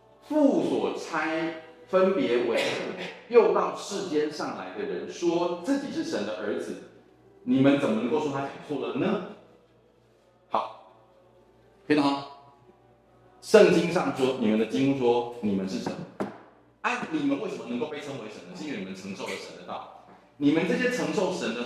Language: Chinese